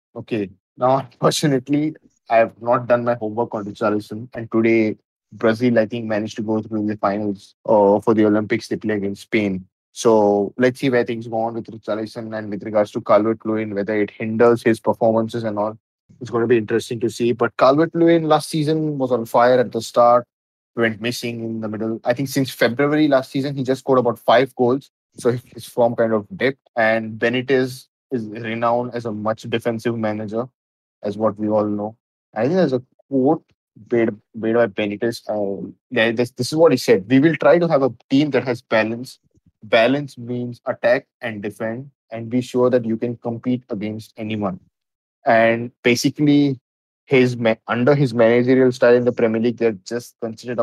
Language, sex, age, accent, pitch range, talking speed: English, male, 20-39, Indian, 110-125 Hz, 195 wpm